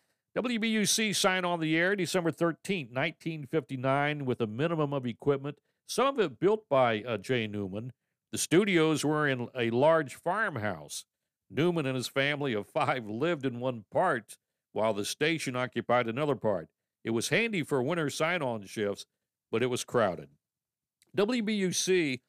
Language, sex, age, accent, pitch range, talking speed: English, male, 60-79, American, 120-155 Hz, 150 wpm